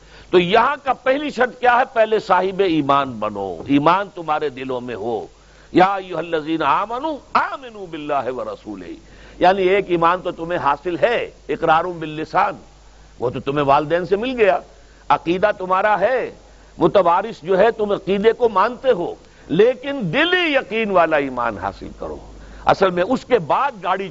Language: Urdu